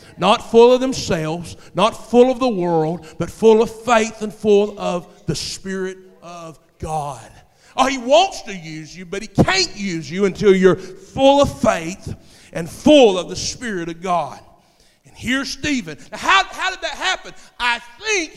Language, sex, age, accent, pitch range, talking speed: English, male, 50-69, American, 205-295 Hz, 175 wpm